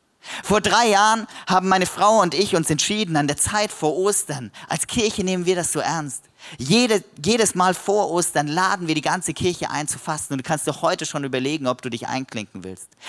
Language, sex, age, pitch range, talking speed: German, male, 40-59, 130-195 Hz, 215 wpm